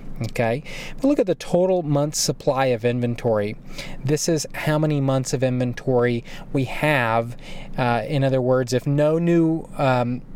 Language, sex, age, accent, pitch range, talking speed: English, male, 30-49, American, 125-170 Hz, 155 wpm